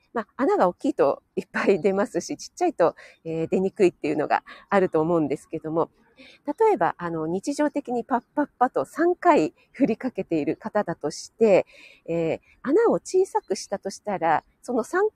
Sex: female